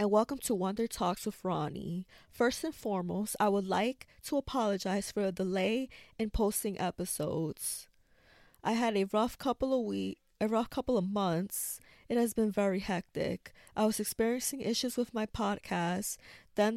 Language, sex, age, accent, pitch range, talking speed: English, female, 20-39, American, 190-230 Hz, 165 wpm